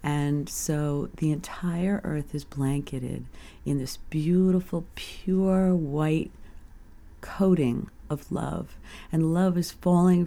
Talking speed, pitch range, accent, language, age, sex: 110 wpm, 140-180 Hz, American, English, 50-69, female